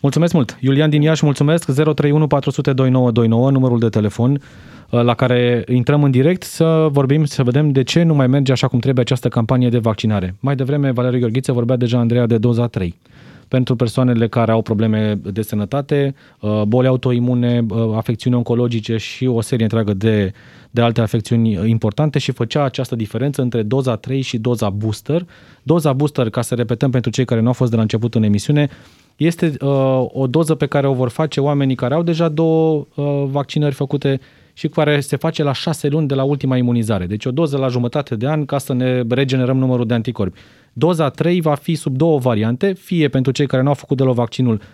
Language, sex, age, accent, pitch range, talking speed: Romanian, male, 20-39, native, 120-145 Hz, 195 wpm